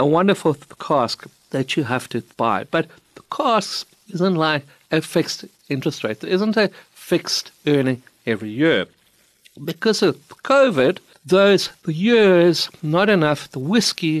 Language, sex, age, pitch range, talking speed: English, male, 60-79, 140-190 Hz, 140 wpm